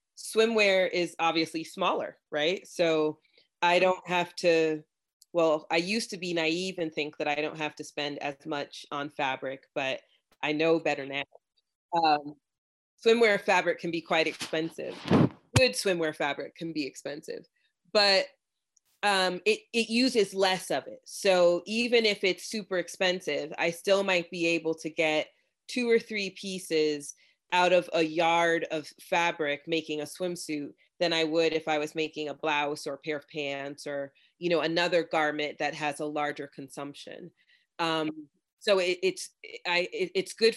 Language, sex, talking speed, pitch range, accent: English, female, 165 wpm, 155-185 Hz, American